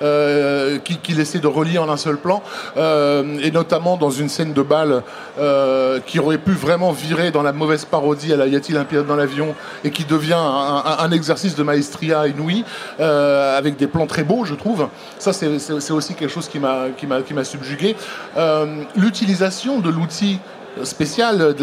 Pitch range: 150-185 Hz